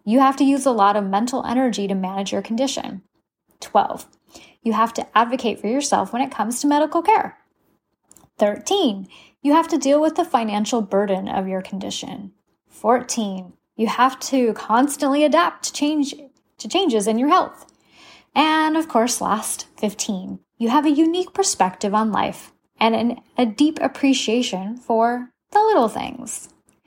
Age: 10-29